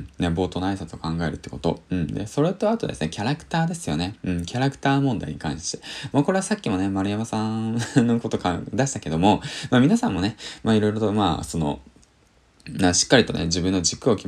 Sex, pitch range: male, 85-125 Hz